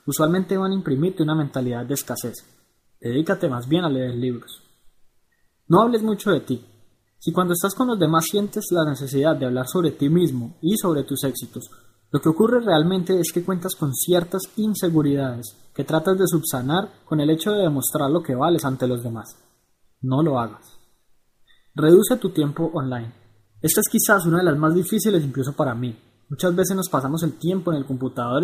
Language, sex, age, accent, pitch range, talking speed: Spanish, male, 20-39, Colombian, 130-175 Hz, 190 wpm